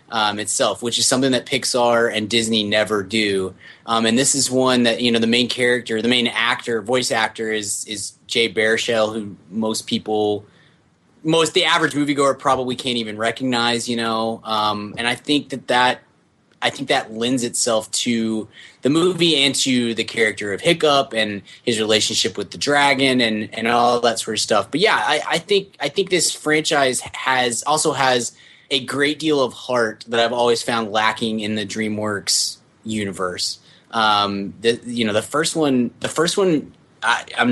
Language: English